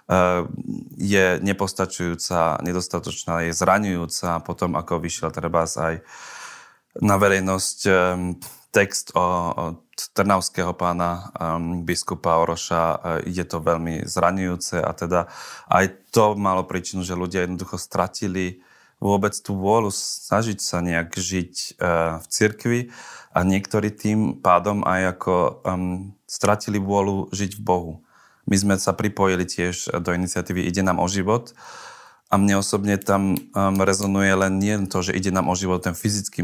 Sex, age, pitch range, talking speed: male, 30-49, 90-95 Hz, 130 wpm